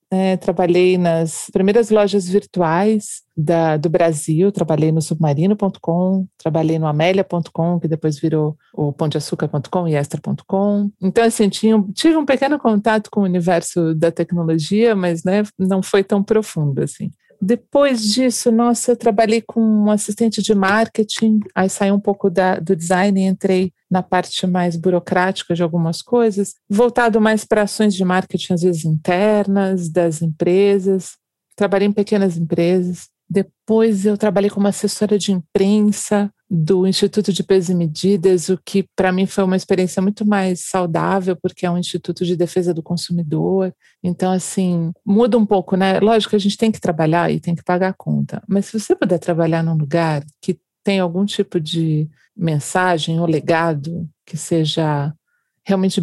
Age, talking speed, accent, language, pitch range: 40-59, 160 wpm, Brazilian, Portuguese, 170-205 Hz